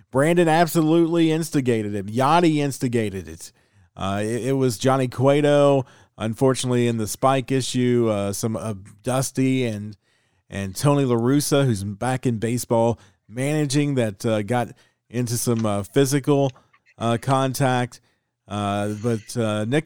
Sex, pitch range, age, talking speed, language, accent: male, 115-140 Hz, 40-59, 135 wpm, English, American